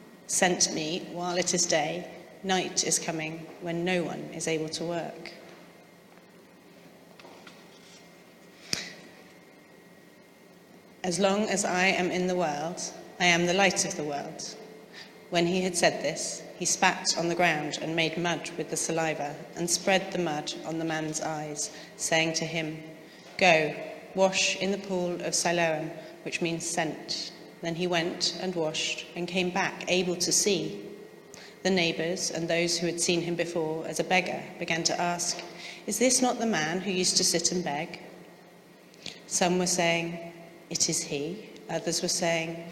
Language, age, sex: English, 30-49, female